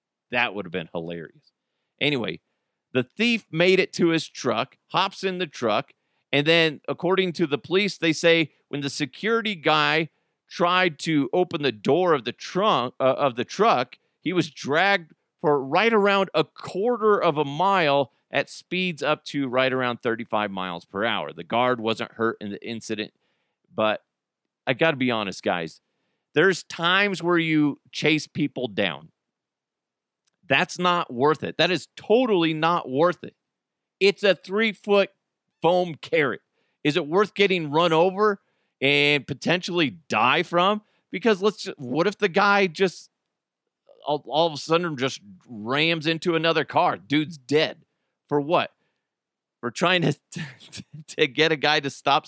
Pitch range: 145-195 Hz